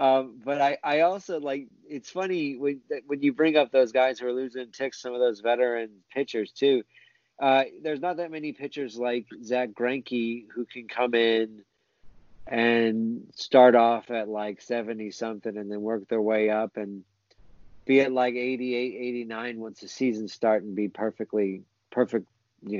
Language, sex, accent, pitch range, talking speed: English, male, American, 110-130 Hz, 175 wpm